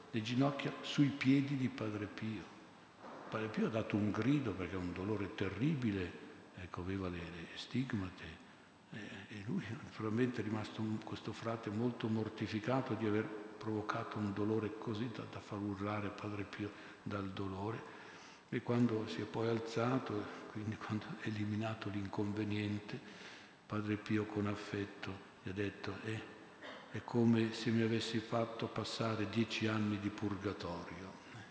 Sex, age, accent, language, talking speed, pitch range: male, 60-79, native, Italian, 145 wpm, 100-110 Hz